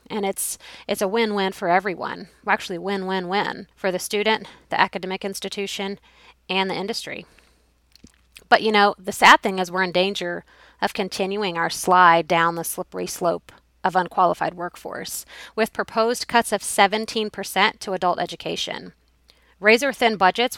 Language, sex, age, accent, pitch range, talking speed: English, female, 30-49, American, 180-210 Hz, 145 wpm